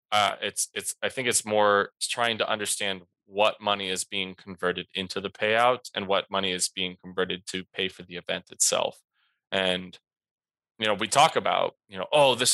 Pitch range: 95-110 Hz